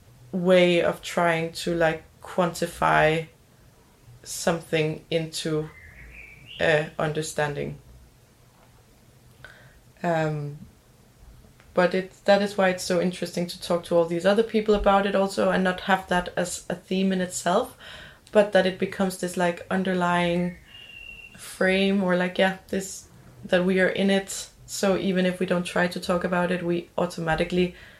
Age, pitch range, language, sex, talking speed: 20-39, 175-200 Hz, English, female, 145 wpm